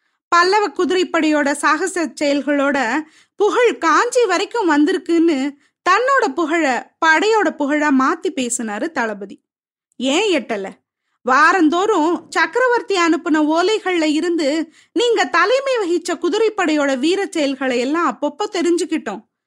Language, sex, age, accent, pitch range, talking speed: Tamil, female, 20-39, native, 280-370 Hz, 95 wpm